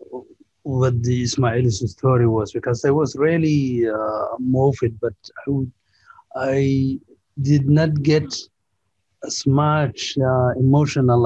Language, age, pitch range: English, 50-69, 120-150 Hz